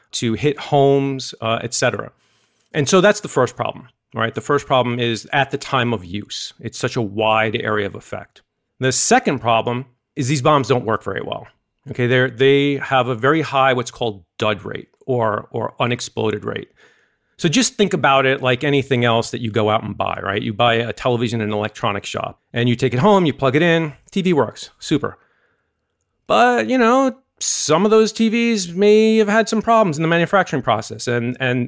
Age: 40-59